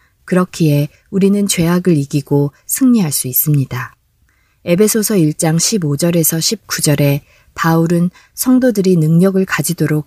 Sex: female